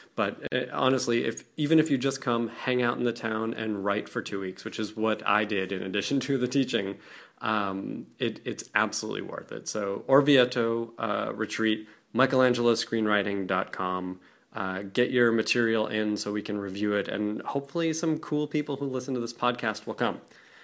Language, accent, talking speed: English, American, 175 wpm